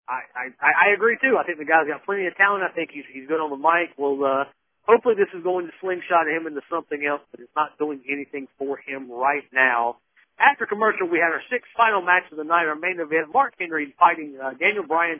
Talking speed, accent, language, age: 245 wpm, American, English, 50-69